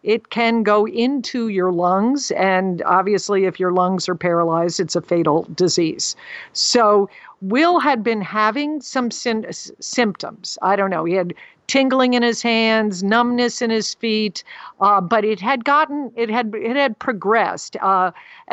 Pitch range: 180-225 Hz